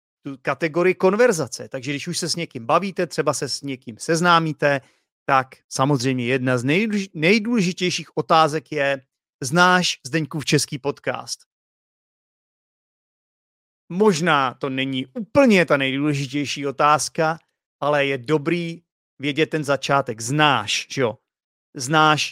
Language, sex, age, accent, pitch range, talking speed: Czech, male, 30-49, native, 135-165 Hz, 110 wpm